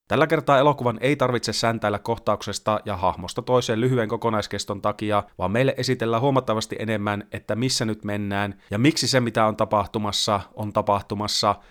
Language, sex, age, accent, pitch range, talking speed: Finnish, male, 30-49, native, 105-125 Hz, 155 wpm